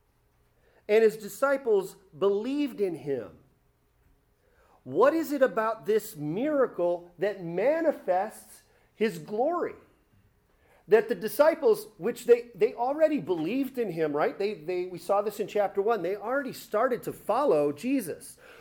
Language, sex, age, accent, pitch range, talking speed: English, male, 40-59, American, 165-250 Hz, 130 wpm